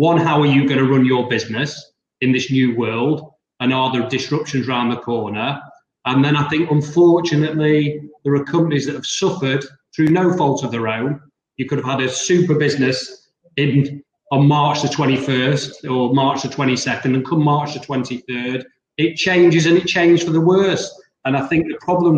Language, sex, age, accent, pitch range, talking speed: English, male, 30-49, British, 130-155 Hz, 190 wpm